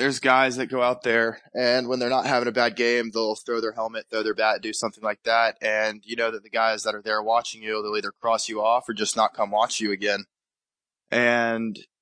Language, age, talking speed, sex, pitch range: English, 20-39, 245 wpm, male, 110-120 Hz